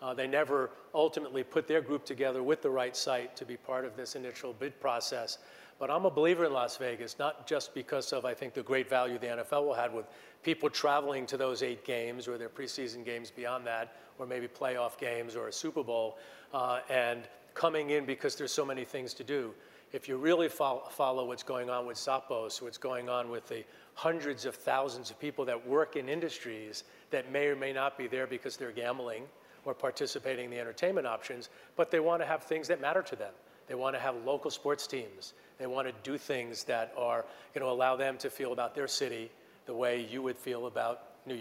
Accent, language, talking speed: American, English, 220 wpm